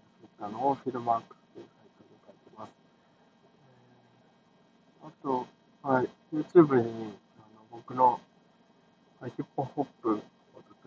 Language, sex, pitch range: Japanese, male, 110-175 Hz